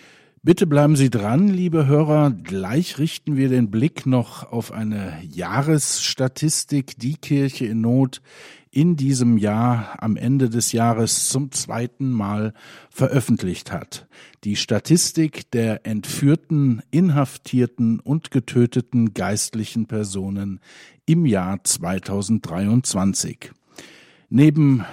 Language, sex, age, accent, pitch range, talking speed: German, male, 50-69, German, 110-140 Hz, 105 wpm